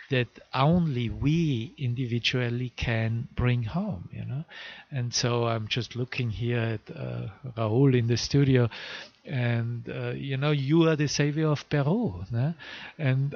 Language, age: English, 50-69